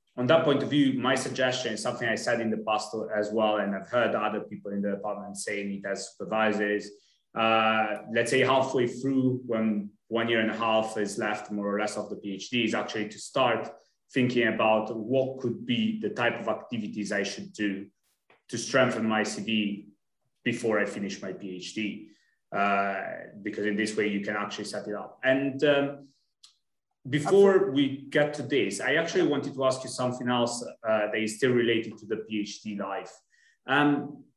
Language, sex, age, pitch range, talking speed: English, male, 30-49, 105-130 Hz, 190 wpm